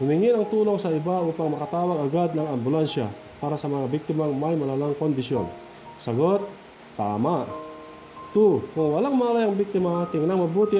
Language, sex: Filipino, male